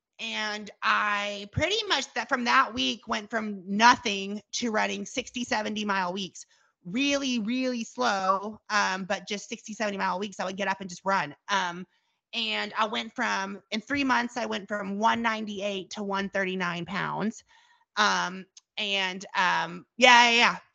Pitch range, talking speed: 195-235 Hz, 135 wpm